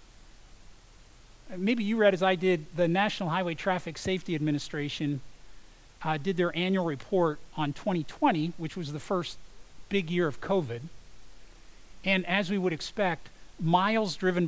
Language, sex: English, male